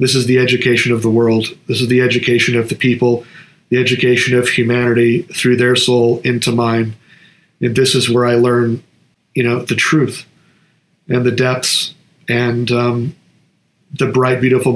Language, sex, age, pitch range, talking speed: English, male, 40-59, 120-140 Hz, 165 wpm